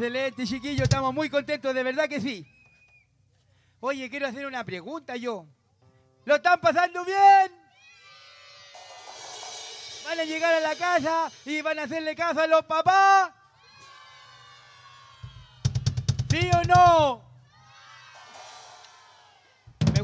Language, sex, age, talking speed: Spanish, male, 40-59, 110 wpm